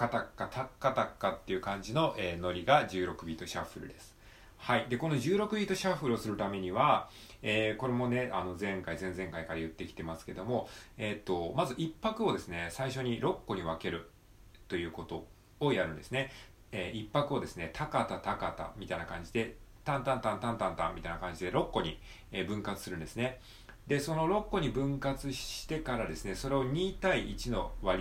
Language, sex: Japanese, male